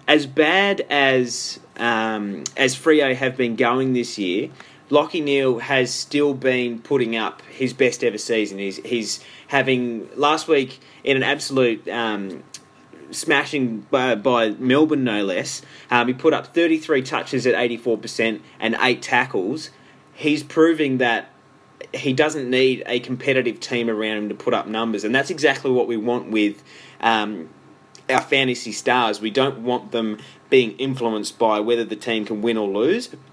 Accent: Australian